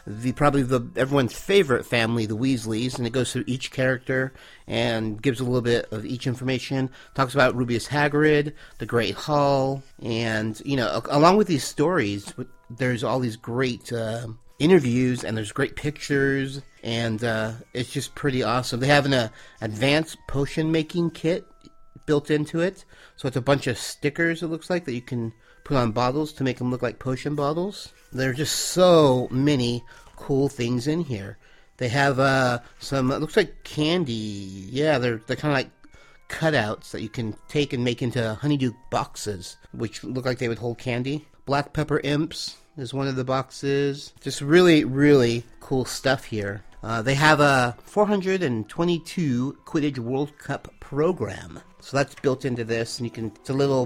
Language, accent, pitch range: English, American, 120-145 Hz